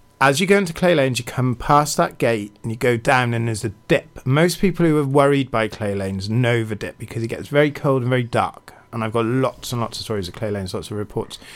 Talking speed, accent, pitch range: 270 wpm, British, 110-140 Hz